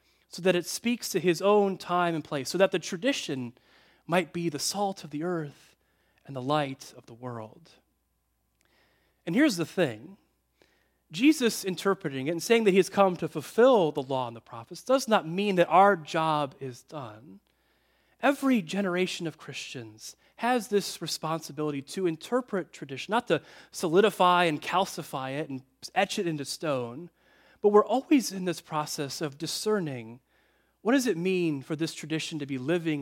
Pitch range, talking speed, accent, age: 140-195 Hz, 170 wpm, American, 30-49